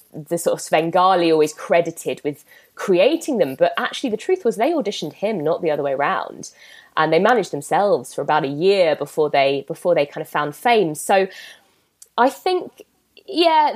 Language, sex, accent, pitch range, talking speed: English, female, British, 165-245 Hz, 185 wpm